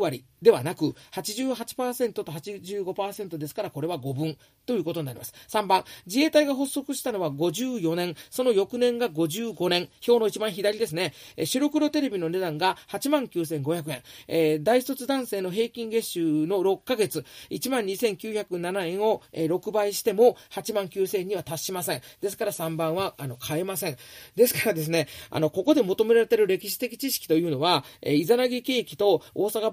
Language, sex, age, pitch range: Japanese, male, 40-59, 155-230 Hz